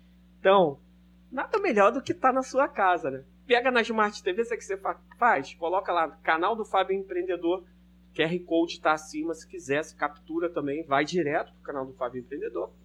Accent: Brazilian